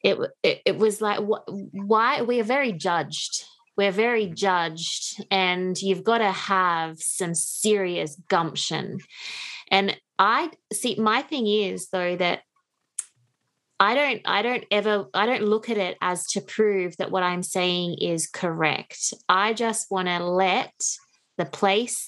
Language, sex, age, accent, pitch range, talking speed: English, female, 20-39, Australian, 170-210 Hz, 150 wpm